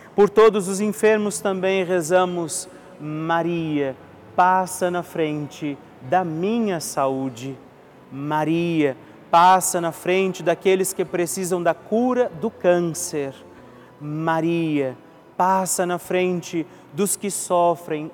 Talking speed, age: 105 wpm, 40-59